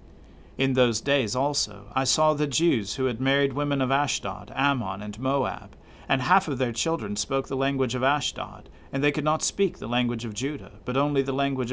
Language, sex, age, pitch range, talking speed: English, male, 40-59, 115-145 Hz, 205 wpm